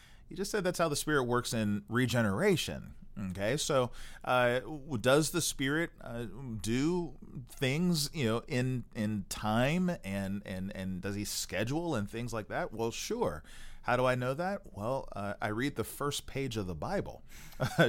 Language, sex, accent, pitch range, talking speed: English, male, American, 105-145 Hz, 175 wpm